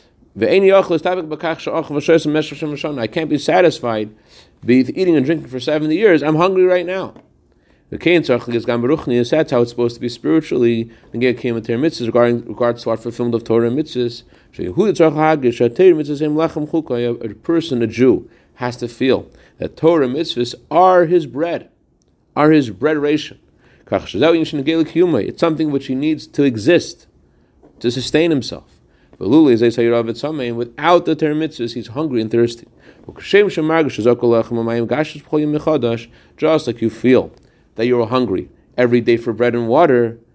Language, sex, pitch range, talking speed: English, male, 120-165 Hz, 110 wpm